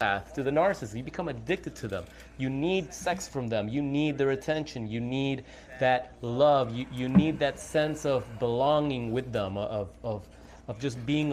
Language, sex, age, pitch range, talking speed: English, male, 30-49, 120-170 Hz, 185 wpm